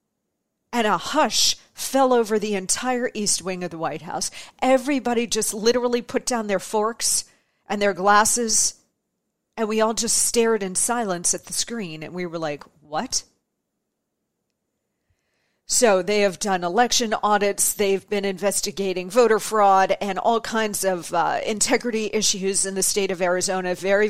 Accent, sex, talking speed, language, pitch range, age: American, female, 155 wpm, English, 195-240 Hz, 40-59